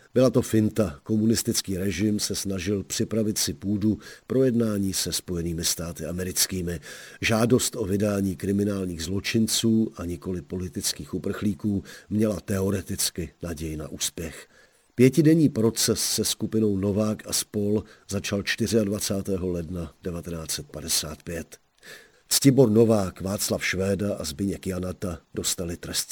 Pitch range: 90-110 Hz